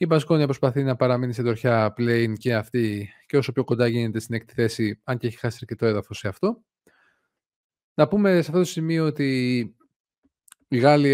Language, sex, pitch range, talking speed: Greek, male, 115-140 Hz, 195 wpm